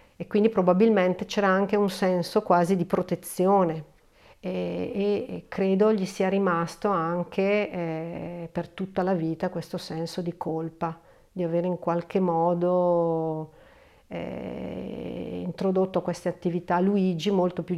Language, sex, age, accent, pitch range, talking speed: Italian, female, 50-69, native, 165-190 Hz, 125 wpm